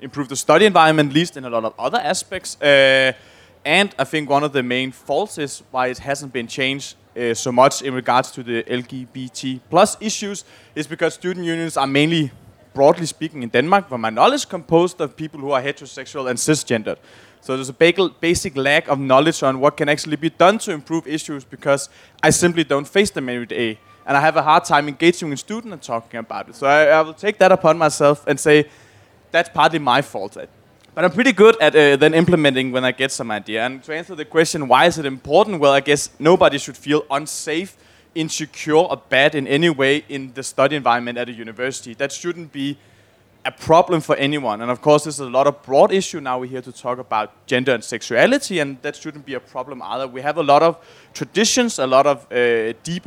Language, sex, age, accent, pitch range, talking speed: Danish, male, 20-39, native, 130-165 Hz, 220 wpm